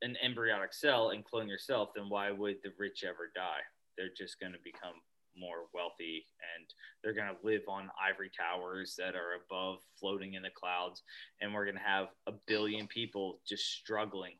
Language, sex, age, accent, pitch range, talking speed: English, male, 20-39, American, 100-130 Hz, 190 wpm